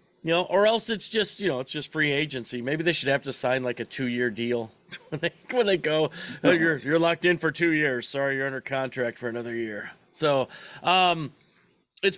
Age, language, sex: 30-49, English, male